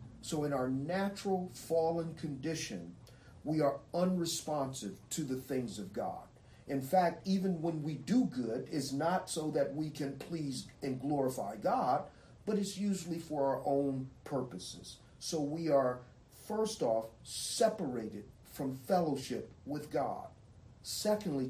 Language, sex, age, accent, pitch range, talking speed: English, male, 40-59, American, 125-160 Hz, 135 wpm